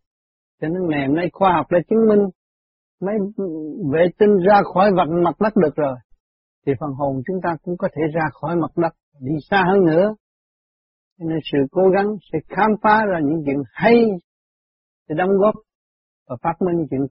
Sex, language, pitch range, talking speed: male, Vietnamese, 140-195 Hz, 195 wpm